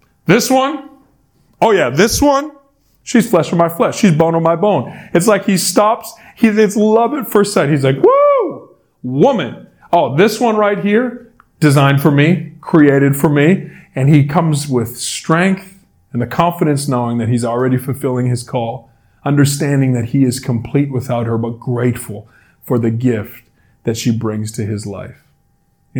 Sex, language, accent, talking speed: male, English, American, 170 wpm